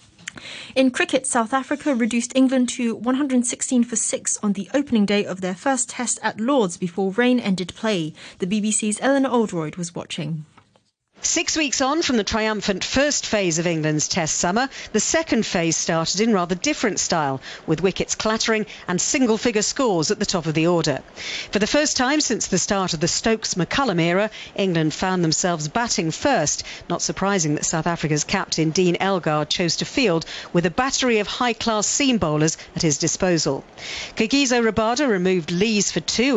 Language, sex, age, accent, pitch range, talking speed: English, female, 40-59, British, 165-230 Hz, 175 wpm